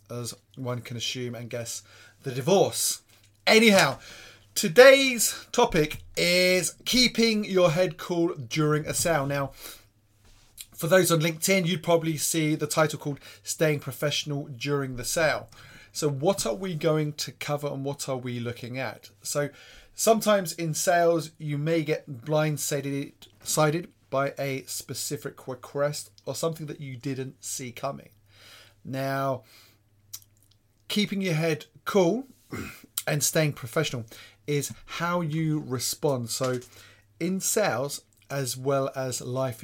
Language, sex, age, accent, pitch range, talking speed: English, male, 30-49, British, 120-160 Hz, 130 wpm